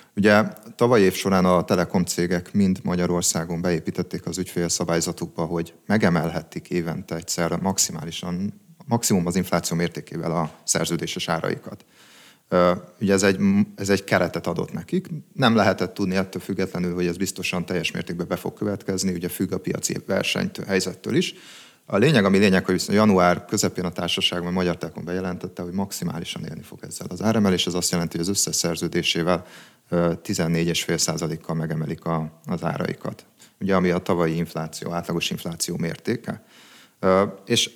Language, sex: Hungarian, male